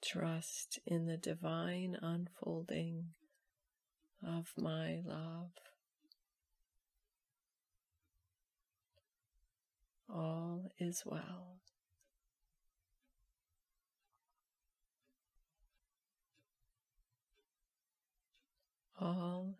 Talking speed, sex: 35 wpm, female